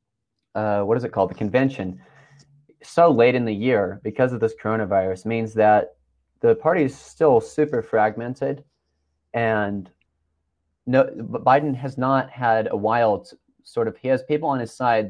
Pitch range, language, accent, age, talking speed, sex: 100-130 Hz, English, American, 30-49, 165 wpm, male